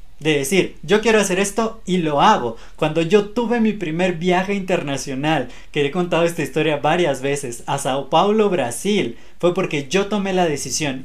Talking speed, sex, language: 180 wpm, male, Spanish